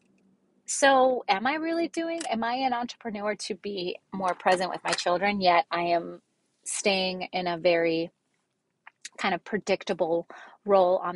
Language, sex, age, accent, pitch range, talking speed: English, female, 30-49, American, 180-240 Hz, 150 wpm